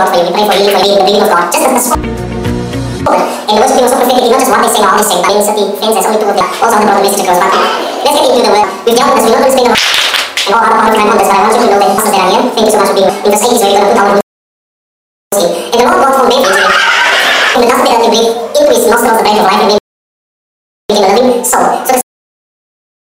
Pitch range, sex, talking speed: 205-260 Hz, male, 260 wpm